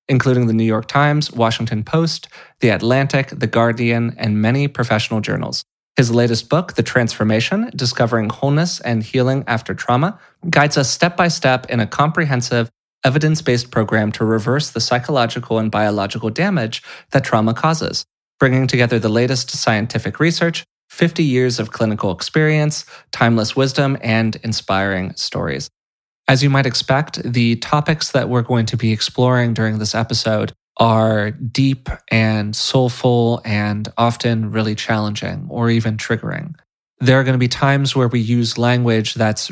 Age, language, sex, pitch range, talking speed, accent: 20-39, English, male, 110-135 Hz, 145 wpm, American